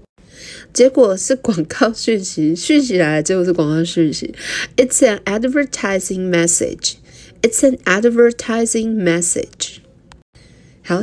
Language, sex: Chinese, female